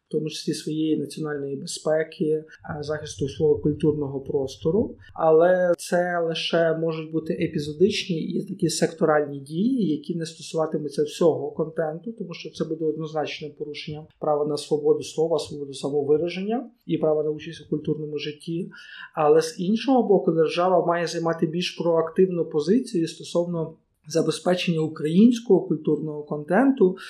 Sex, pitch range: male, 155-185 Hz